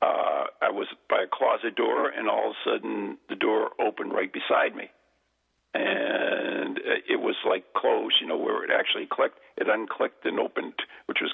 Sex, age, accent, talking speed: male, 50-69, American, 185 wpm